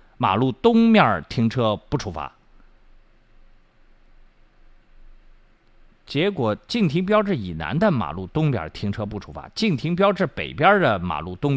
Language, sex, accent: Chinese, male, native